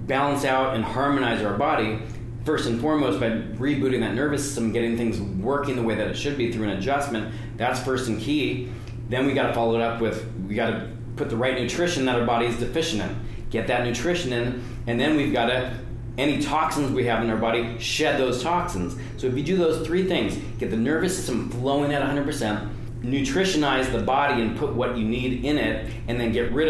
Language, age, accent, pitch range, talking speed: English, 30-49, American, 110-130 Hz, 225 wpm